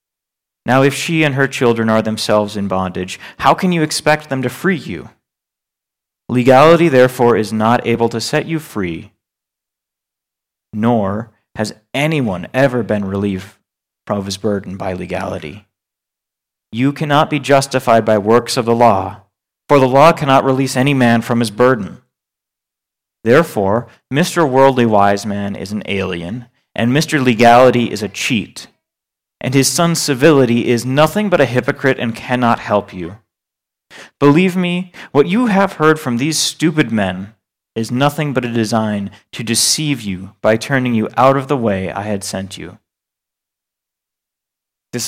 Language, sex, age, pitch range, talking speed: English, male, 30-49, 105-140 Hz, 150 wpm